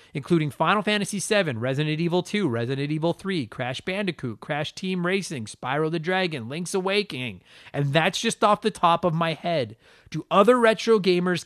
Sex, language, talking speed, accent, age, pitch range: male, English, 175 wpm, American, 30-49, 130-190 Hz